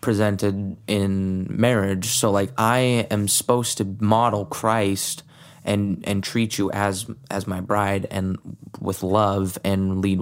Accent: American